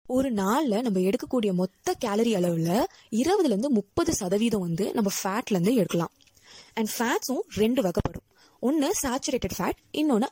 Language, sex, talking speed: Tamil, female, 135 wpm